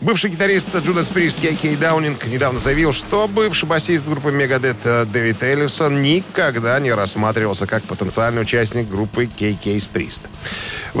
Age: 40-59